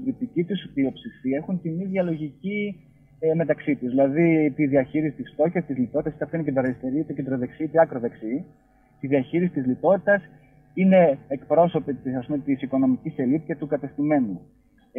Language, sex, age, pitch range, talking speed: Greek, male, 30-49, 135-175 Hz, 150 wpm